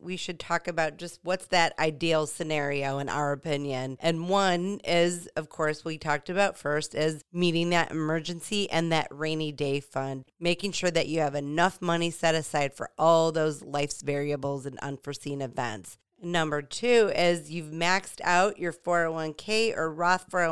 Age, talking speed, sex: 30-49, 165 wpm, female